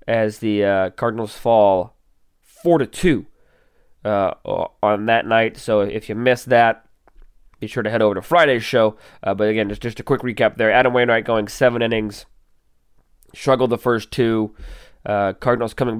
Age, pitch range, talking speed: 20-39, 100-120 Hz, 175 wpm